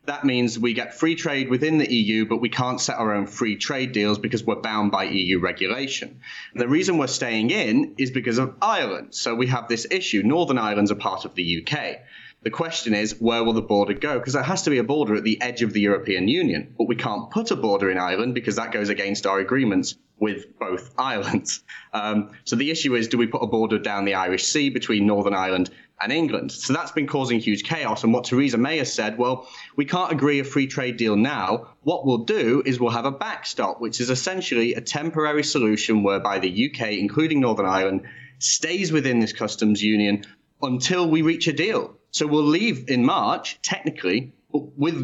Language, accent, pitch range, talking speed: English, British, 105-140 Hz, 215 wpm